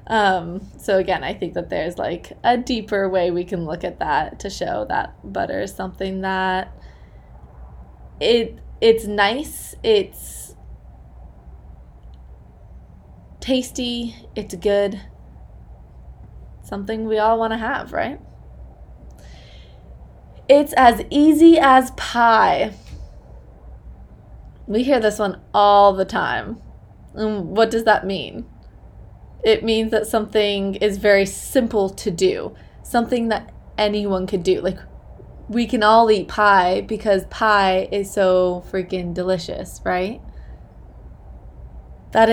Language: English